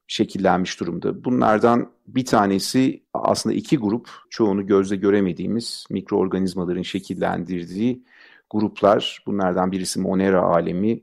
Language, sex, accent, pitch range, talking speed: Turkish, male, native, 95-120 Hz, 100 wpm